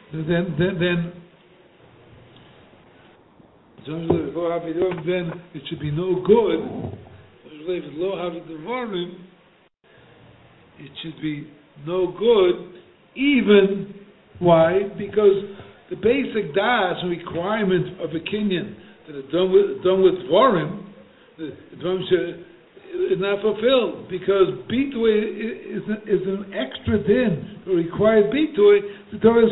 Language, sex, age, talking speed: English, male, 60-79, 100 wpm